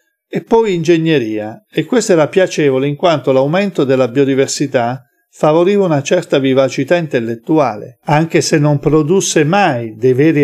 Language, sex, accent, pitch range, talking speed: Italian, male, native, 125-160 Hz, 140 wpm